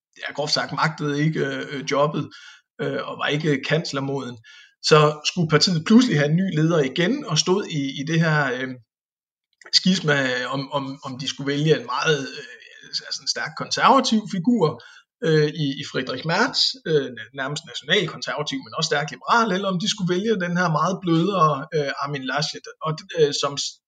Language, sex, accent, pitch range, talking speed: Danish, male, native, 145-195 Hz, 180 wpm